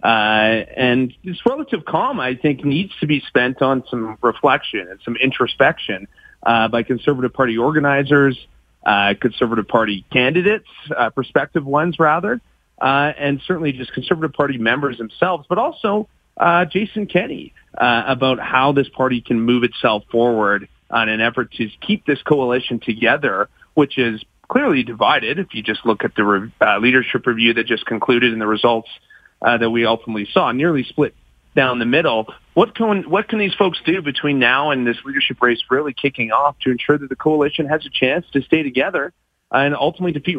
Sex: male